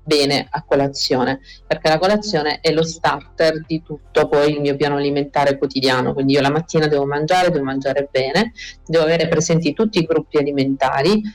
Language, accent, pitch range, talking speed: Italian, native, 140-160 Hz, 175 wpm